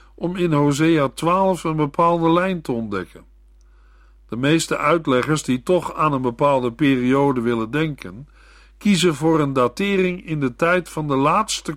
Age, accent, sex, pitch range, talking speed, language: 50-69, Dutch, male, 125-165 Hz, 155 wpm, Dutch